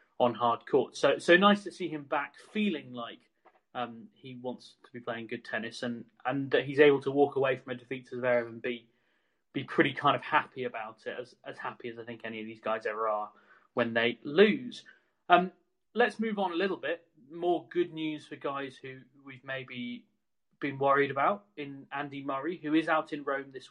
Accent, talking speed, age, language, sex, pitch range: British, 215 wpm, 30-49, English, male, 125-165 Hz